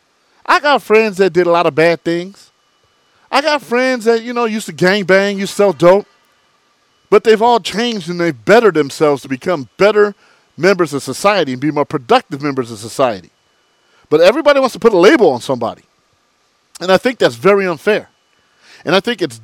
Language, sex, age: English, male, 40-59